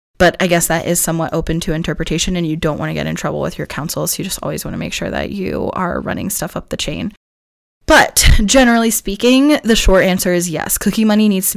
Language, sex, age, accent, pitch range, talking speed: English, female, 20-39, American, 165-195 Hz, 250 wpm